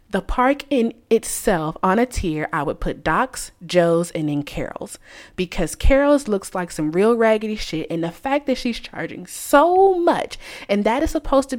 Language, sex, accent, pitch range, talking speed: English, female, American, 175-260 Hz, 185 wpm